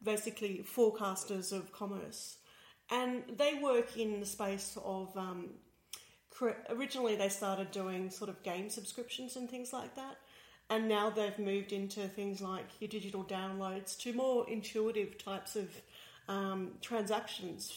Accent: Australian